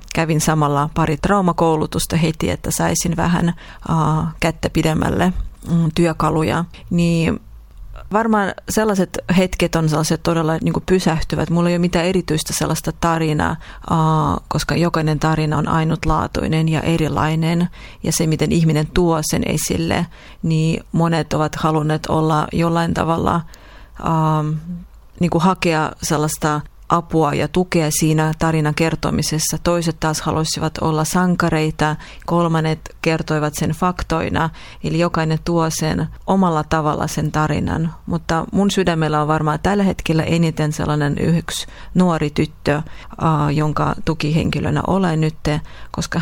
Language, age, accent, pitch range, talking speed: Finnish, 30-49, native, 155-170 Hz, 115 wpm